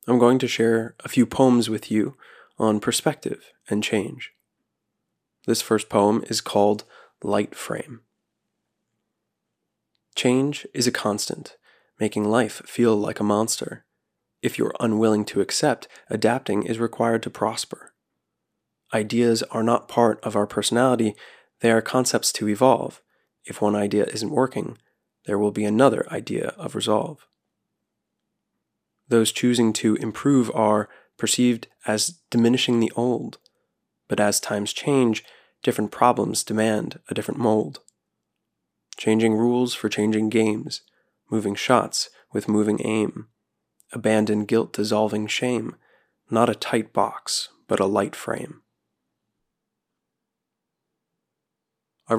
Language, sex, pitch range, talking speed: English, male, 105-120 Hz, 125 wpm